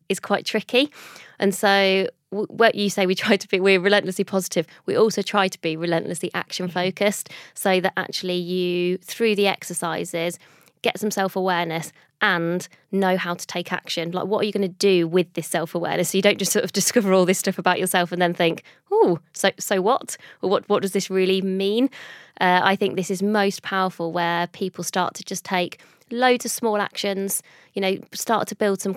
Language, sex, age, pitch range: English, female, 20-39, 175-200 Hz